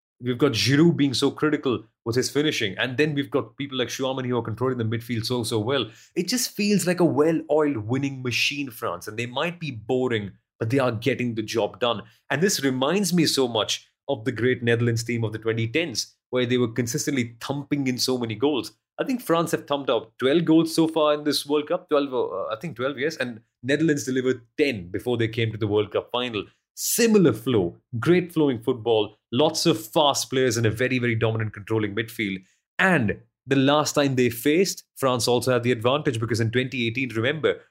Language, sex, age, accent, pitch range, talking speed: English, male, 30-49, Indian, 115-145 Hz, 210 wpm